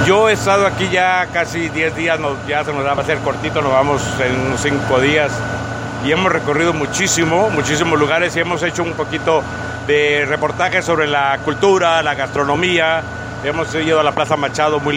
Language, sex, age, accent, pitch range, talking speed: Spanish, male, 60-79, Mexican, 135-165 Hz, 190 wpm